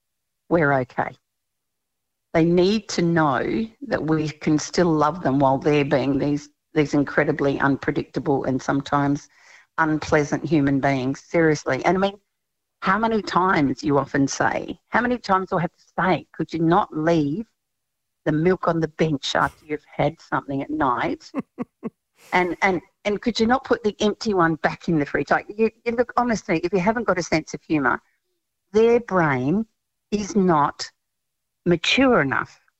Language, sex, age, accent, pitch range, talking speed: English, female, 50-69, Australian, 145-190 Hz, 165 wpm